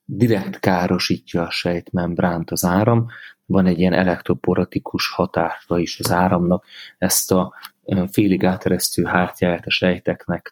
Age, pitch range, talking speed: 30-49, 90-105 Hz, 115 wpm